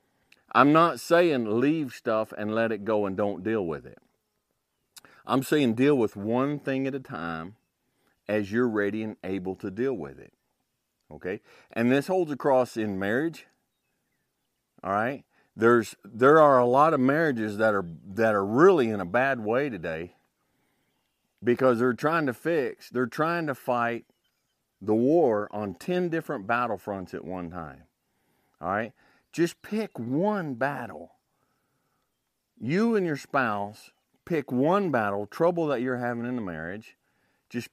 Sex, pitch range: male, 110-145 Hz